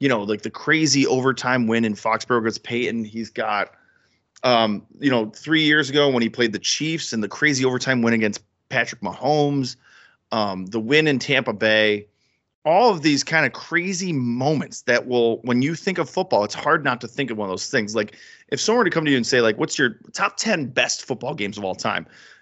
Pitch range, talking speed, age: 110-145 Hz, 220 wpm, 30-49